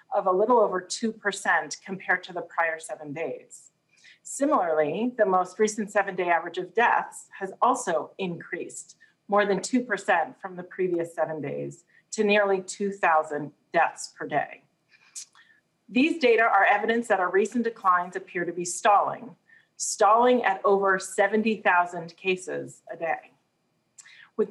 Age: 40-59